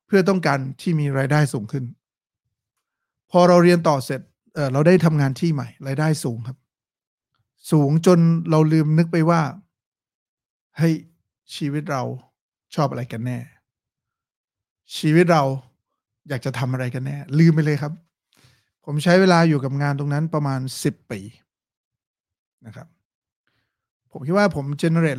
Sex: male